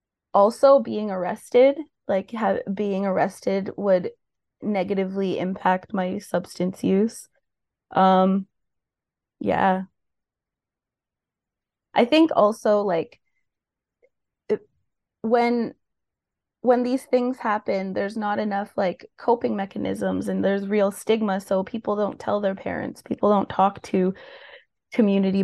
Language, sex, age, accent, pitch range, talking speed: English, female, 20-39, American, 190-225 Hz, 110 wpm